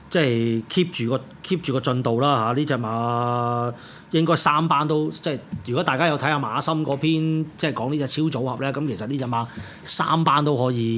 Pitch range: 135-175 Hz